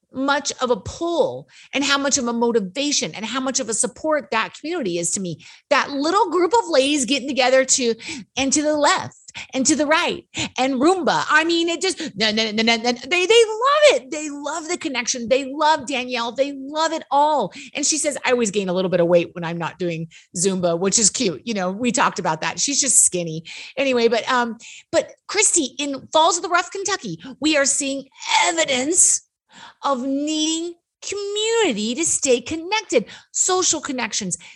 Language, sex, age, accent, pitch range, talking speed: English, female, 30-49, American, 235-320 Hz, 185 wpm